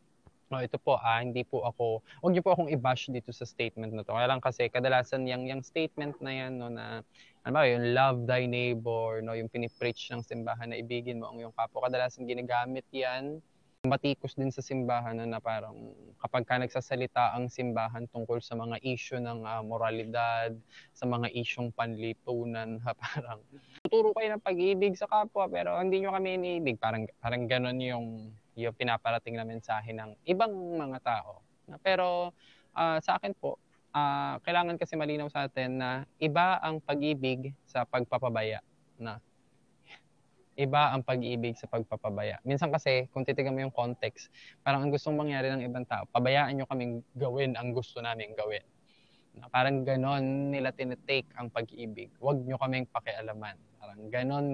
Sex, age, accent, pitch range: male, 20-39, native, 115-140 Hz